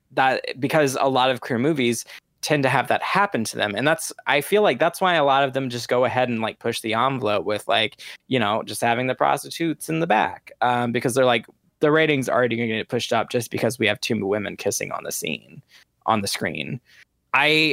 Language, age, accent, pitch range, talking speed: English, 20-39, American, 115-135 Hz, 235 wpm